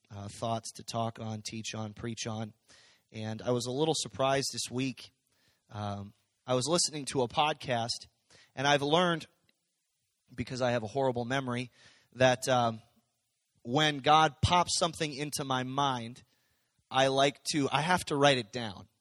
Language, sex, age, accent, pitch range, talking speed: English, male, 30-49, American, 125-160 Hz, 160 wpm